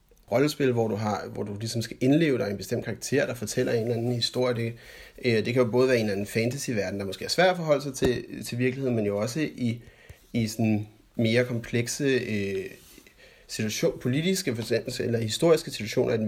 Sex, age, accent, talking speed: male, 30-49, native, 215 wpm